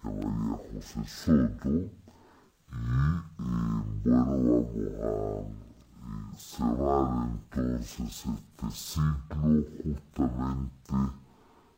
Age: 60-79